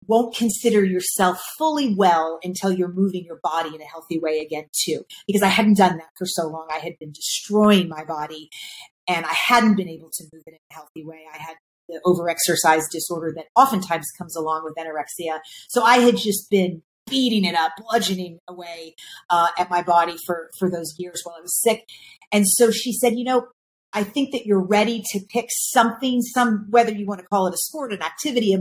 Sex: female